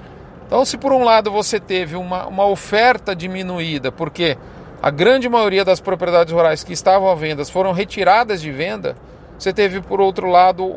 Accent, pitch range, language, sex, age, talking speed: Brazilian, 180-225 Hz, Portuguese, male, 40-59, 175 wpm